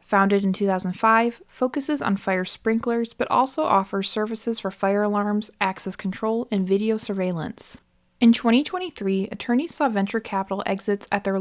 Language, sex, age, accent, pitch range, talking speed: English, female, 20-39, American, 190-230 Hz, 145 wpm